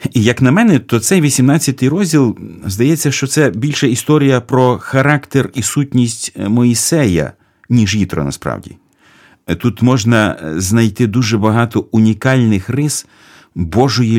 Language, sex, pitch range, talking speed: Ukrainian, male, 95-130 Hz, 125 wpm